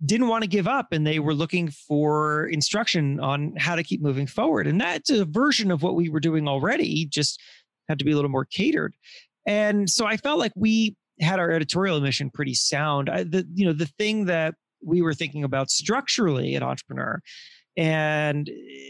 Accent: American